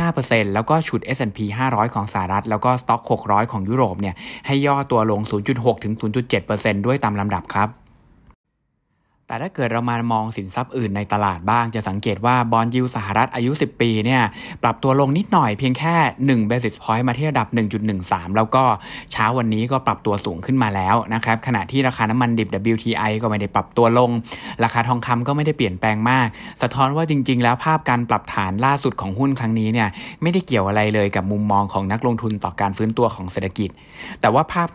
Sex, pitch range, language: male, 105-130 Hz, Thai